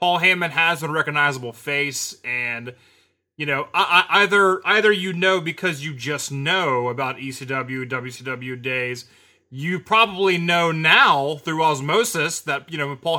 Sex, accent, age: male, American, 20-39